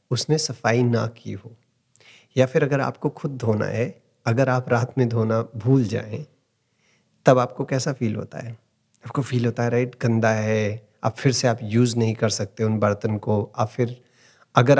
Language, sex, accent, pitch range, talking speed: Hindi, male, native, 115-135 Hz, 185 wpm